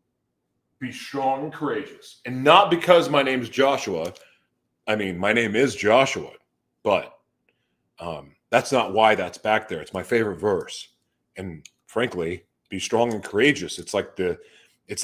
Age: 40-59